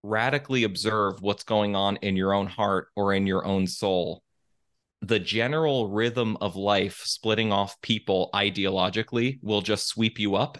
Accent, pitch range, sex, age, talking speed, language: American, 100-120 Hz, male, 30-49, 160 wpm, English